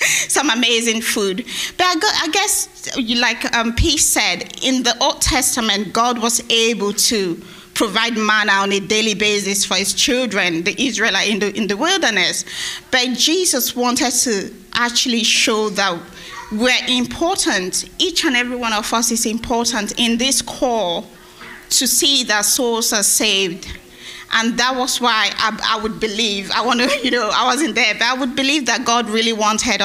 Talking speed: 165 wpm